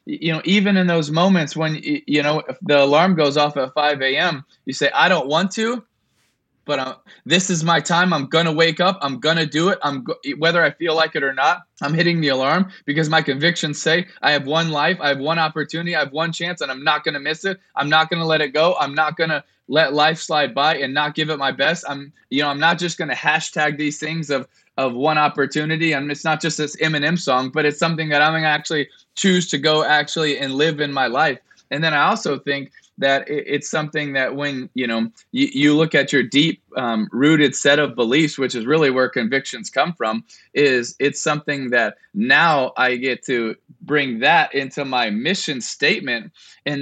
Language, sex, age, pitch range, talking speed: English, male, 20-39, 140-165 Hz, 225 wpm